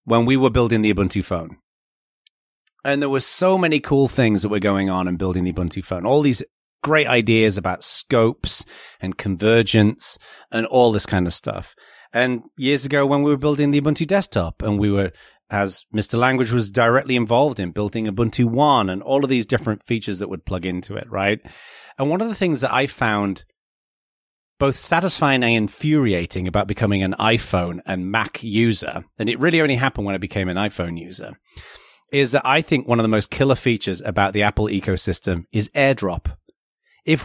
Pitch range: 100-135 Hz